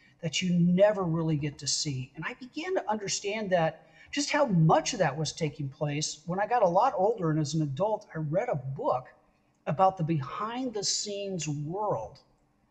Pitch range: 155-220 Hz